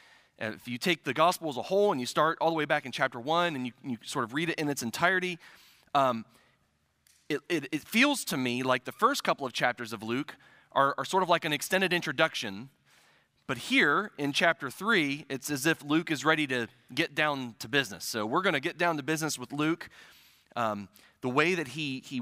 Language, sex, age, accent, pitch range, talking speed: English, male, 30-49, American, 125-170 Hz, 225 wpm